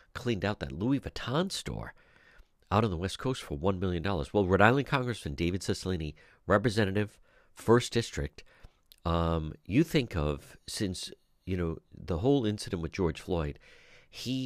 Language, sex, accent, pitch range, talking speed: English, male, American, 80-105 Hz, 160 wpm